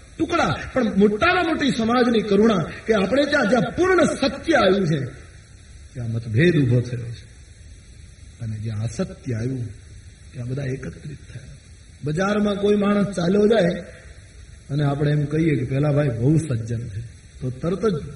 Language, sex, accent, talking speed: Gujarati, male, native, 95 wpm